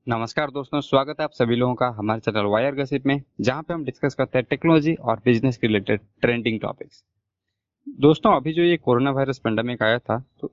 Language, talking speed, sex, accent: Hindi, 205 wpm, male, native